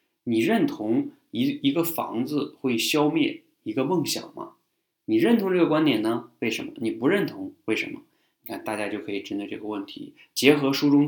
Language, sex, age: Chinese, male, 20-39